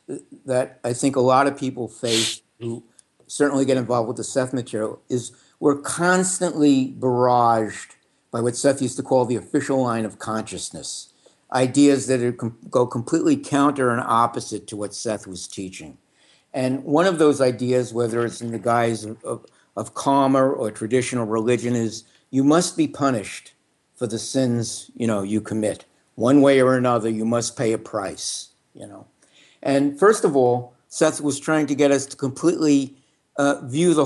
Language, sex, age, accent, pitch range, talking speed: English, male, 60-79, American, 120-145 Hz, 175 wpm